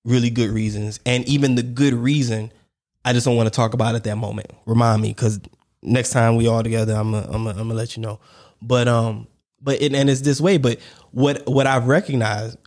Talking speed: 225 wpm